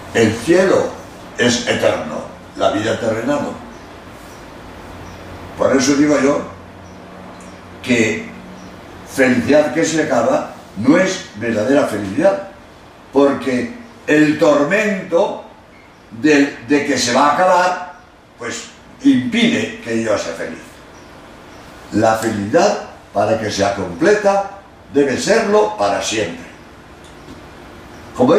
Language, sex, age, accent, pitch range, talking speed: Spanish, male, 60-79, Spanish, 115-185 Hz, 100 wpm